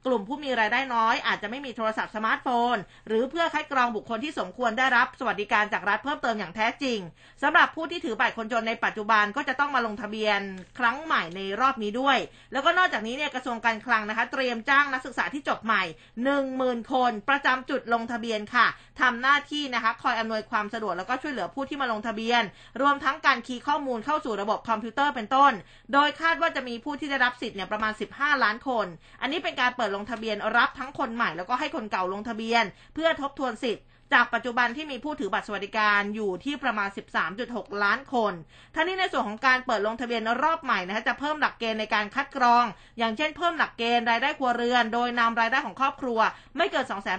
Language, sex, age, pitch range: Thai, female, 20-39, 220-275 Hz